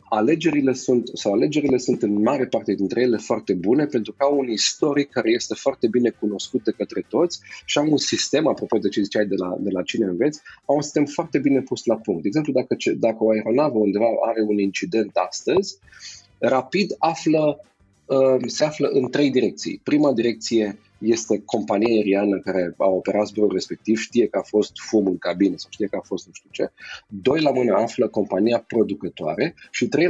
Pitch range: 105-140 Hz